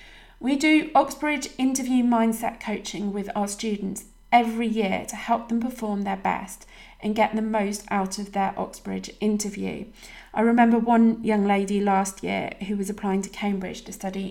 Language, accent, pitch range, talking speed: English, British, 195-220 Hz, 170 wpm